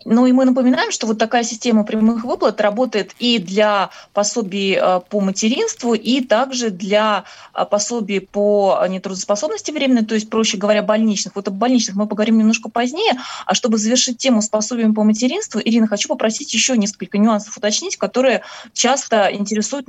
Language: Russian